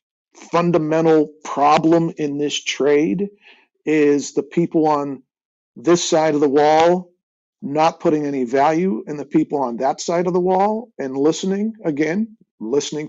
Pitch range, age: 145-175 Hz, 50-69